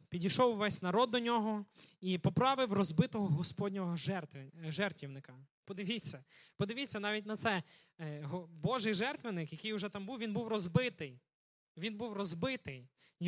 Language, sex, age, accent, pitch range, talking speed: Ukrainian, male, 20-39, native, 165-220 Hz, 120 wpm